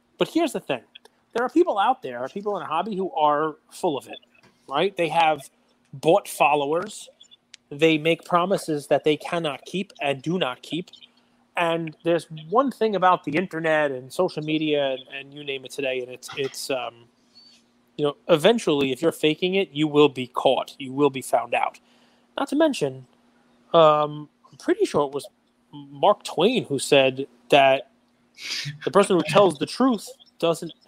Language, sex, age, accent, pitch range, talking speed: English, male, 30-49, American, 140-185 Hz, 175 wpm